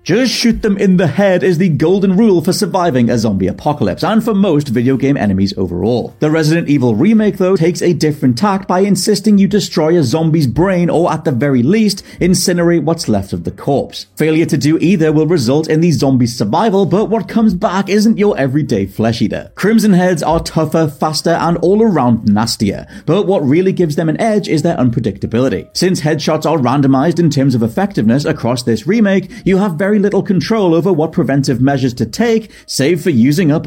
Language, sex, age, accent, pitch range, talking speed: English, male, 30-49, British, 135-190 Hz, 200 wpm